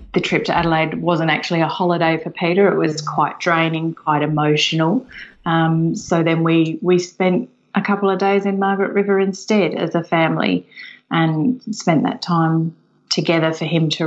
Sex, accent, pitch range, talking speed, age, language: female, Australian, 160-195 Hz, 175 wpm, 30-49, English